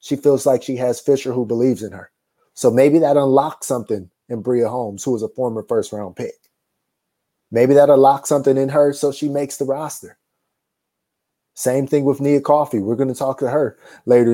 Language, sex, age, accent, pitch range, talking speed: English, male, 20-39, American, 120-140 Hz, 195 wpm